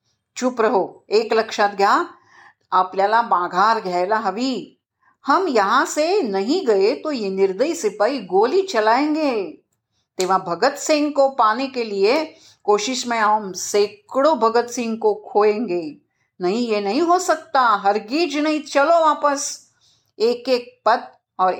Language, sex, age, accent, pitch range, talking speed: Marathi, female, 50-69, native, 205-290 Hz, 120 wpm